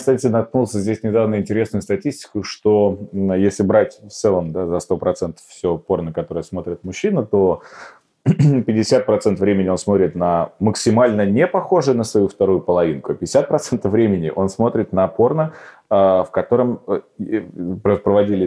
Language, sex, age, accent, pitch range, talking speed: Russian, male, 30-49, native, 95-110 Hz, 135 wpm